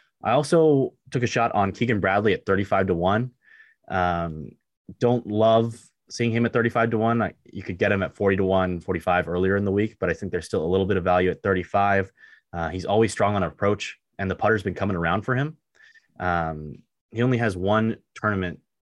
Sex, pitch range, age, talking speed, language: male, 90-105 Hz, 20-39, 210 wpm, English